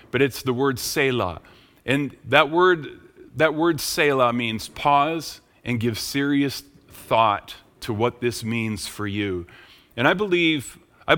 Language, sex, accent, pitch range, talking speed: English, male, American, 115-150 Hz, 145 wpm